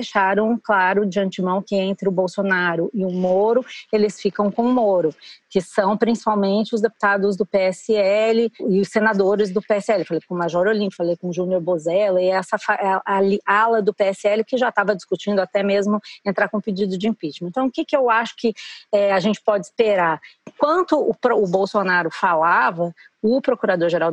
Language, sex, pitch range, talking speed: Portuguese, female, 190-230 Hz, 180 wpm